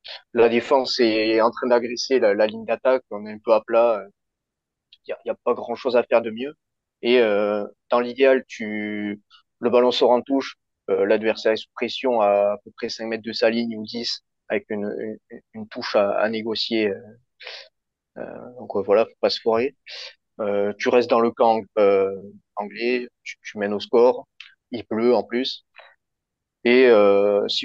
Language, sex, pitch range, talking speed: French, male, 105-125 Hz, 190 wpm